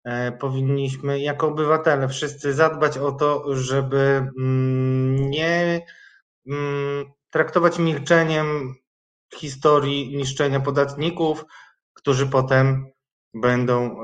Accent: native